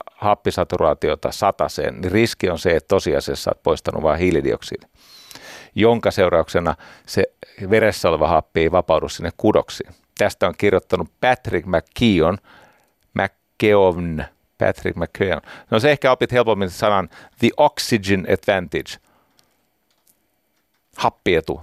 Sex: male